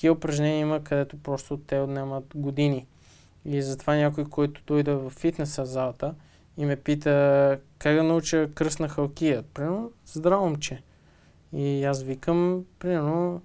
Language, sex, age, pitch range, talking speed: Bulgarian, male, 20-39, 135-150 Hz, 135 wpm